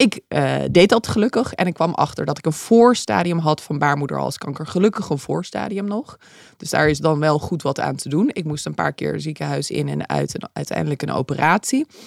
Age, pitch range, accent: 20-39, 145-190 Hz, Dutch